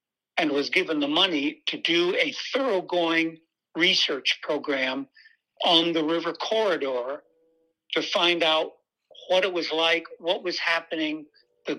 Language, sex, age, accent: English, male, 60-79, American